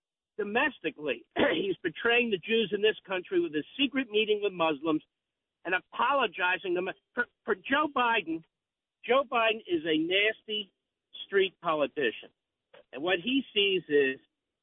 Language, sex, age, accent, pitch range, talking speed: English, male, 50-69, American, 165-265 Hz, 135 wpm